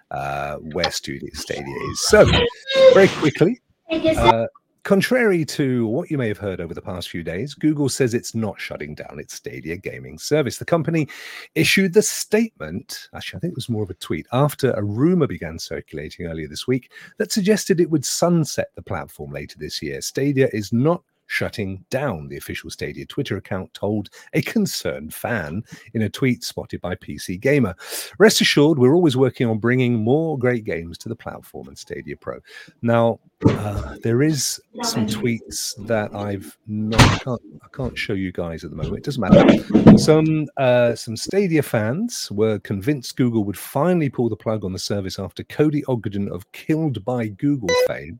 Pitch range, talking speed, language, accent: 105-155 Hz, 180 wpm, English, British